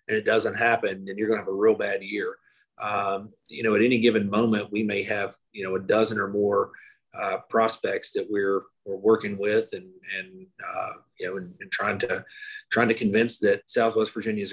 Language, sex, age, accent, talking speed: English, male, 30-49, American, 210 wpm